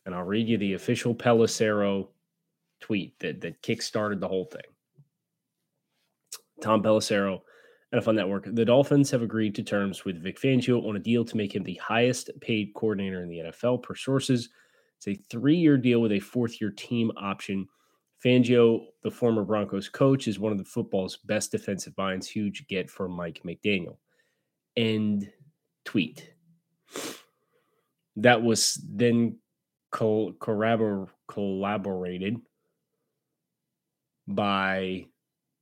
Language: English